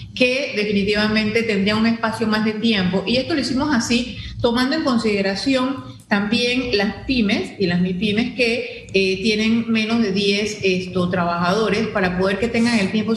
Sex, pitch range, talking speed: female, 185-225 Hz, 165 wpm